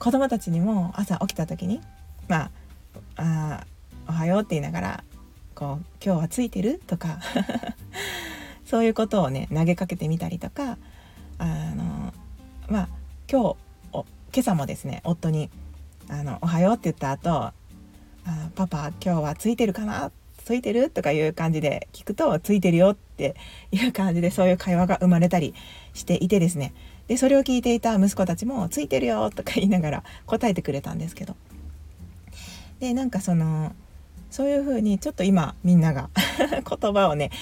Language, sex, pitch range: Japanese, female, 145-205 Hz